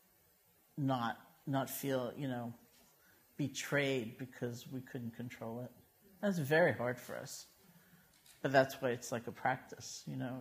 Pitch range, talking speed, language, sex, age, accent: 130-155 Hz, 145 wpm, English, male, 50-69, American